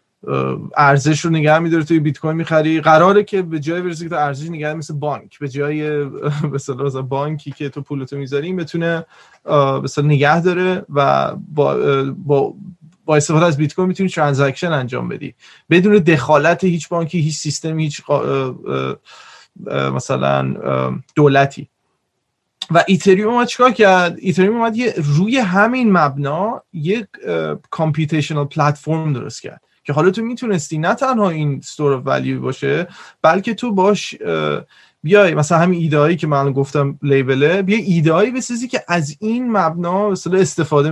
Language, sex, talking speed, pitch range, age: Persian, male, 135 wpm, 145-180 Hz, 20-39